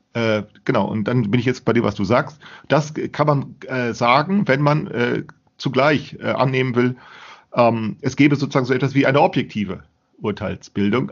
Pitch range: 110-145 Hz